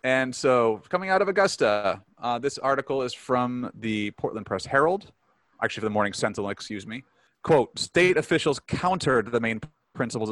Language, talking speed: English, 170 wpm